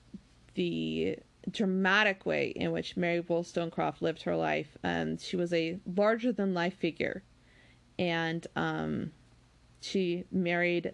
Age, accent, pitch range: 20-39, American, 170-205 Hz